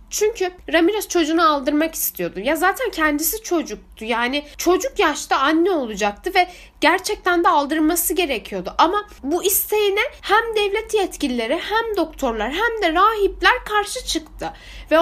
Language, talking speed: Turkish, 130 wpm